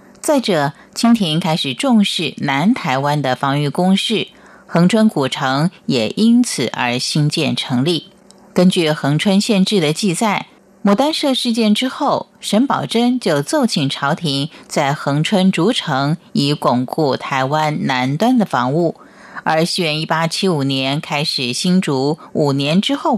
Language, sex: Chinese, female